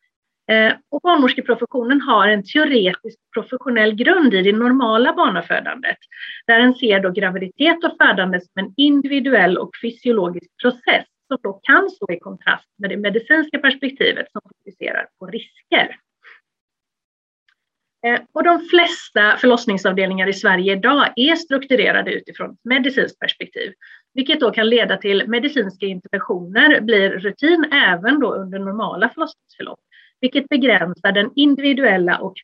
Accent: native